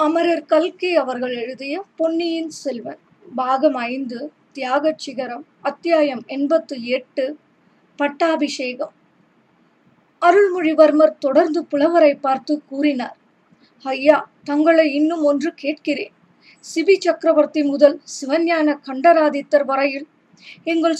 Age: 20-39